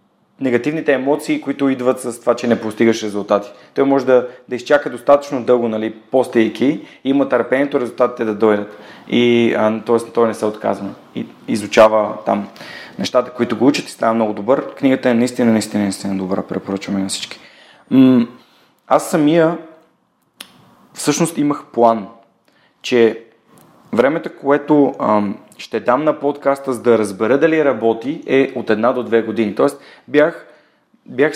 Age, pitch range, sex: 30-49, 110-140 Hz, male